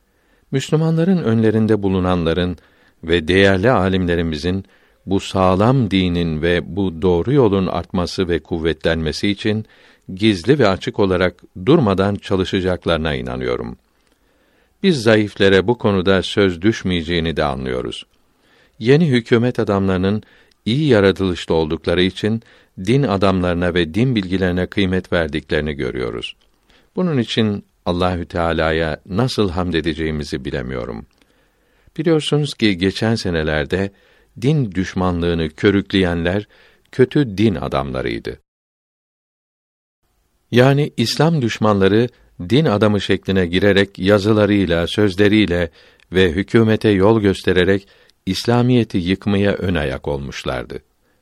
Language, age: Turkish, 60-79